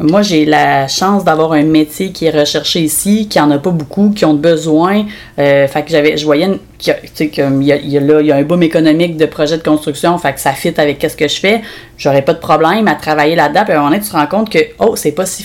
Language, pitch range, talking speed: French, 150-195 Hz, 255 wpm